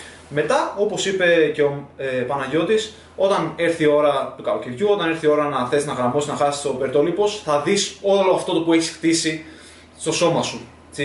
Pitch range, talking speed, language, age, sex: 150-210 Hz, 200 wpm, Greek, 20-39, male